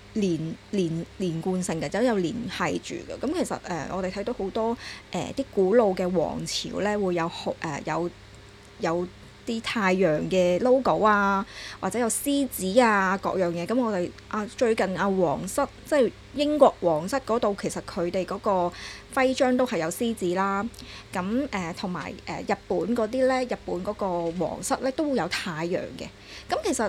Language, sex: Chinese, female